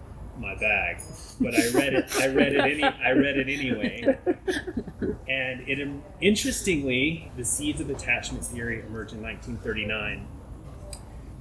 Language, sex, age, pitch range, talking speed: English, male, 30-49, 105-125 Hz, 130 wpm